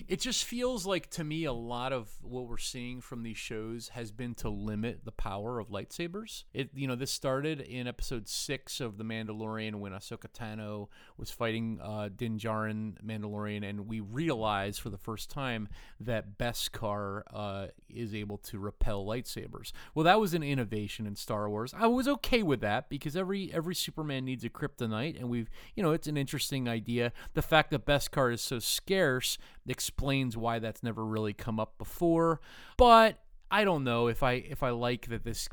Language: English